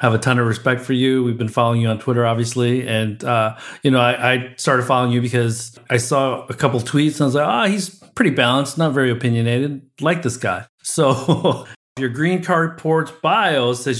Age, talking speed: 40-59, 220 wpm